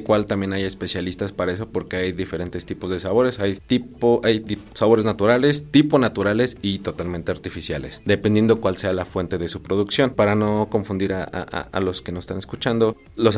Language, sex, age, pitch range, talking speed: Spanish, male, 30-49, 90-105 Hz, 190 wpm